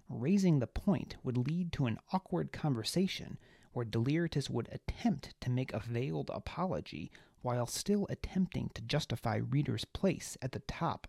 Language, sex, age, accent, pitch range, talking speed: English, male, 40-59, American, 120-175 Hz, 150 wpm